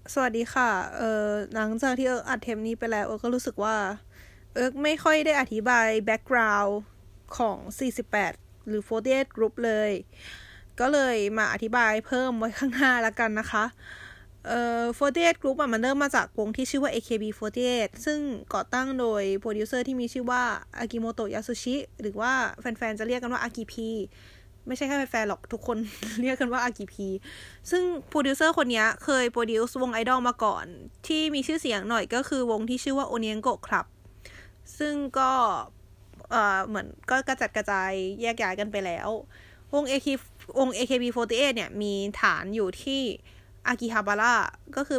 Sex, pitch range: female, 215-260 Hz